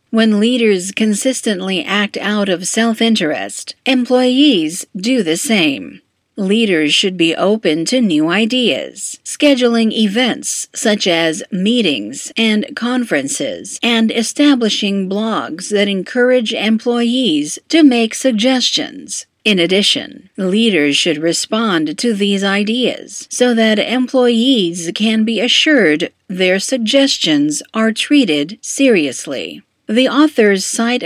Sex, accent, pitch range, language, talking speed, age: female, American, 195-265 Hz, Indonesian, 110 wpm, 50-69